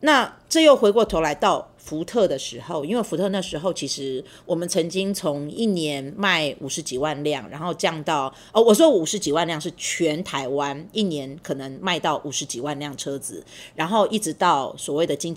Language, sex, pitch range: Chinese, female, 145-195 Hz